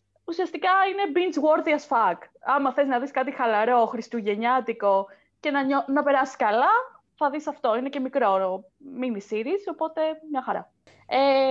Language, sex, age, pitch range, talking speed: Greek, female, 20-39, 235-345 Hz, 150 wpm